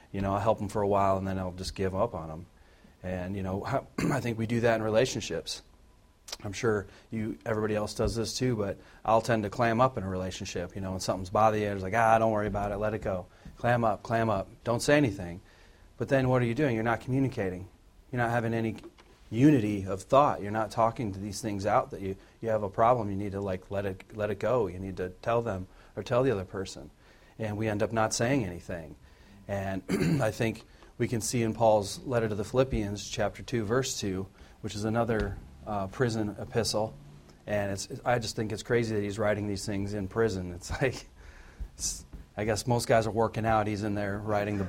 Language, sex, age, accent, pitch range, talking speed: English, male, 40-59, American, 95-115 Hz, 230 wpm